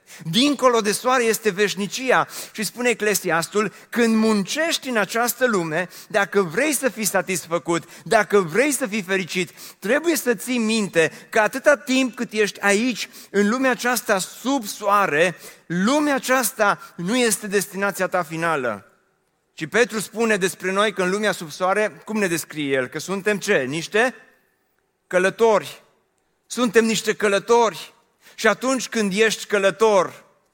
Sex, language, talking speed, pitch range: male, Romanian, 140 wpm, 185-225 Hz